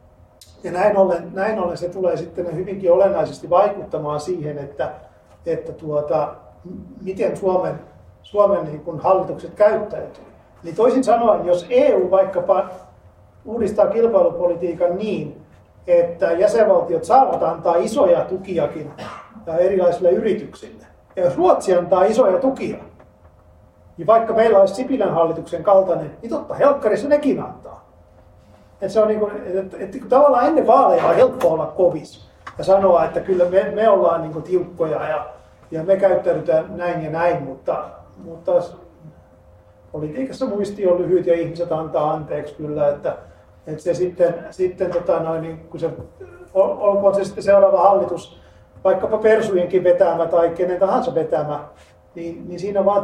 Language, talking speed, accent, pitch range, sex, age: Finnish, 125 wpm, native, 155-195 Hz, male, 40-59